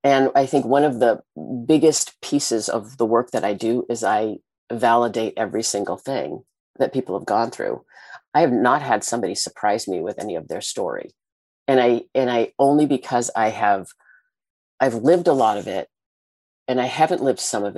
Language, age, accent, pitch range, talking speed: English, 40-59, American, 115-130 Hz, 190 wpm